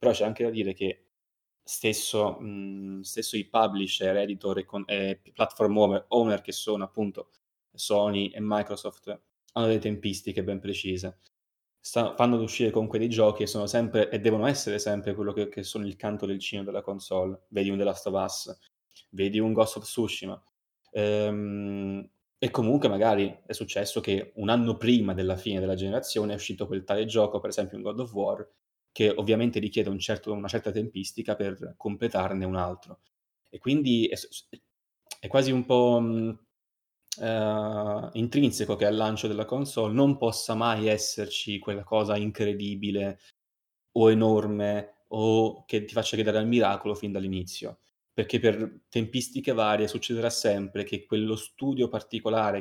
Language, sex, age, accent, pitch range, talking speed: Italian, male, 20-39, native, 100-110 Hz, 160 wpm